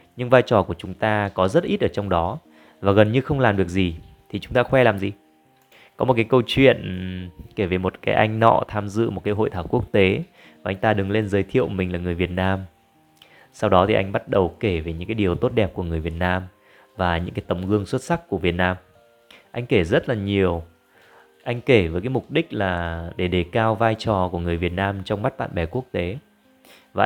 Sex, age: male, 20-39